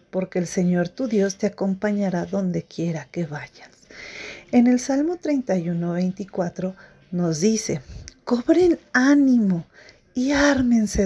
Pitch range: 175-235 Hz